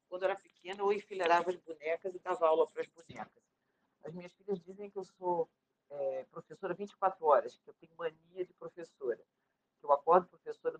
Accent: Brazilian